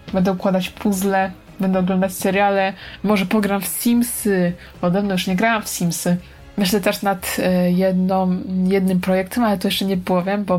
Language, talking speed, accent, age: Polish, 175 wpm, native, 20-39